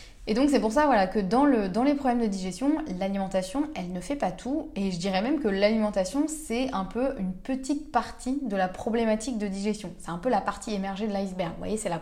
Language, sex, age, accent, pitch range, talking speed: French, female, 20-39, French, 185-240 Hz, 245 wpm